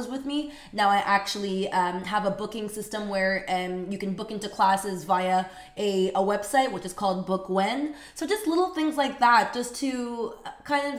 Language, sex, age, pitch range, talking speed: English, female, 20-39, 200-245 Hz, 195 wpm